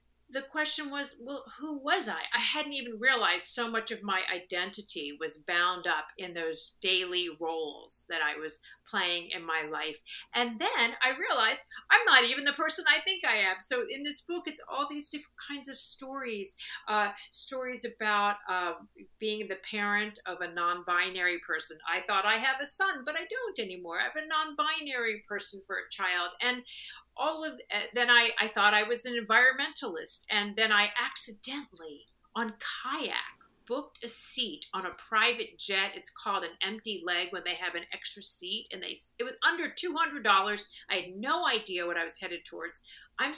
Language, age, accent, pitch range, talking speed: English, 50-69, American, 180-265 Hz, 185 wpm